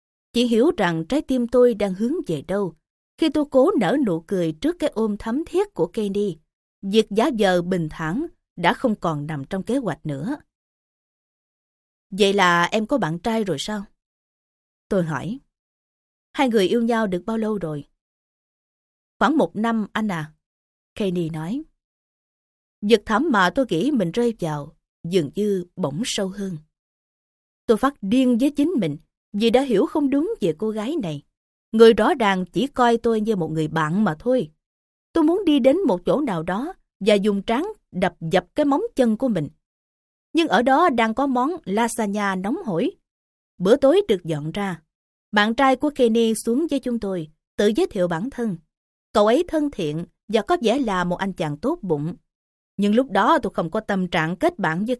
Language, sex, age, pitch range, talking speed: Vietnamese, female, 20-39, 180-260 Hz, 185 wpm